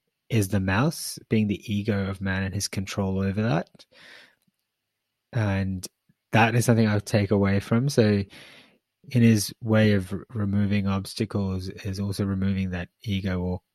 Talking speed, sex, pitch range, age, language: 150 wpm, male, 95-110 Hz, 20-39, English